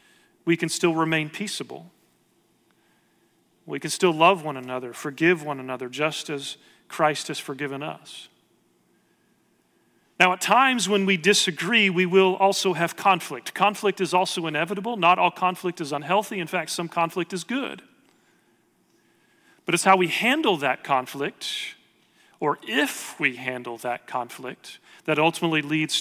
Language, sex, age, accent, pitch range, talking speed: English, male, 40-59, American, 155-190 Hz, 145 wpm